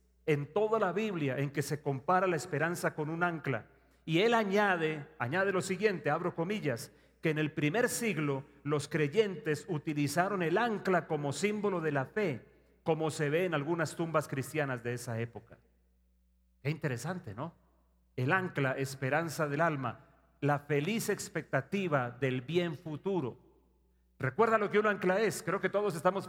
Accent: Mexican